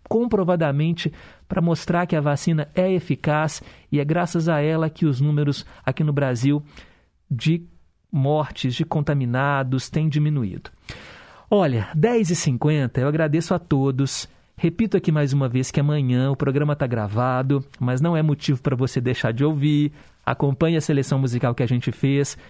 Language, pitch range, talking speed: Portuguese, 145-195 Hz, 160 wpm